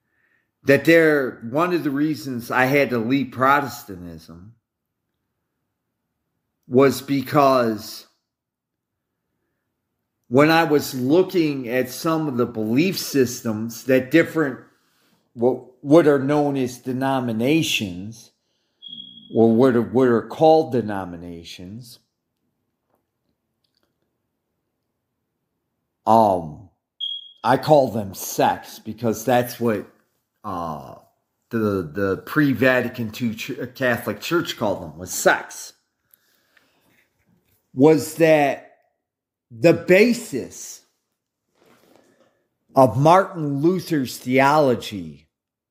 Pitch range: 115-155 Hz